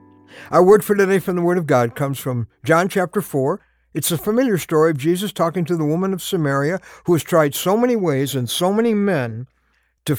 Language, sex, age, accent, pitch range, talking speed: English, male, 60-79, American, 130-200 Hz, 220 wpm